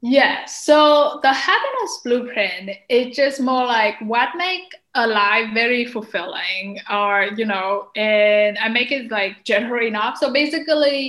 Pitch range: 200-255 Hz